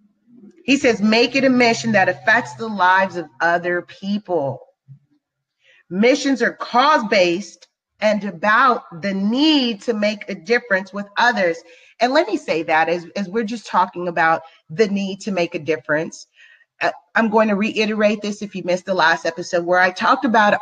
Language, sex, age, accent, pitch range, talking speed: English, female, 30-49, American, 180-240 Hz, 170 wpm